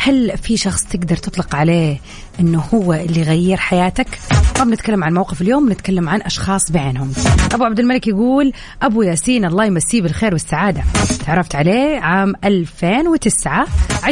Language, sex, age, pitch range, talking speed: English, female, 30-49, 175-230 Hz, 145 wpm